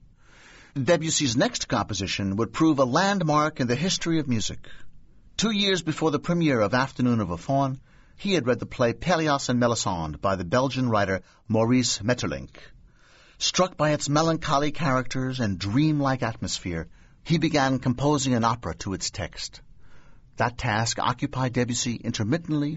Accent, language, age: American, English, 60-79